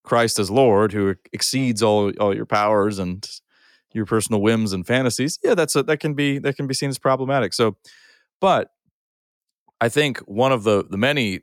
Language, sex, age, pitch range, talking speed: English, male, 30-49, 100-130 Hz, 190 wpm